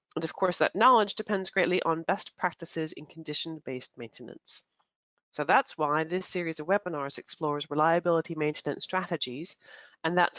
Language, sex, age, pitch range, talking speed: English, female, 30-49, 150-200 Hz, 150 wpm